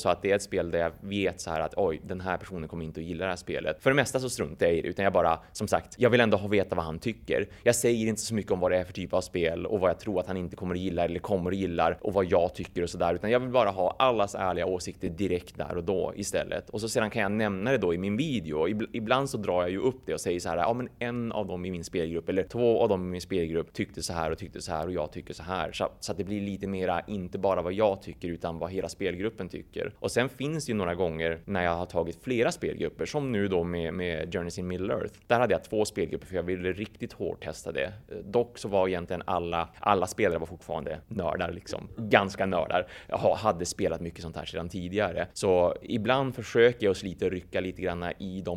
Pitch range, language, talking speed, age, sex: 85-105 Hz, Swedish, 275 wpm, 20-39, male